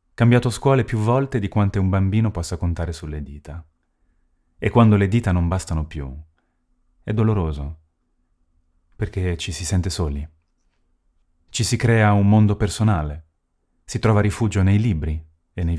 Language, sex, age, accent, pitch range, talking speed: Italian, male, 30-49, native, 80-105 Hz, 150 wpm